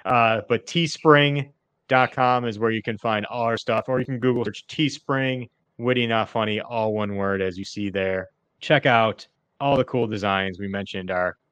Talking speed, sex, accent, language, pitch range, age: 190 wpm, male, American, English, 100-125 Hz, 30-49